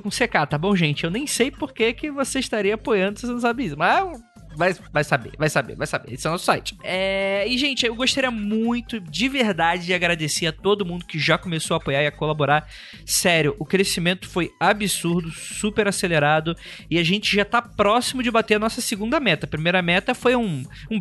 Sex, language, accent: male, Portuguese, Brazilian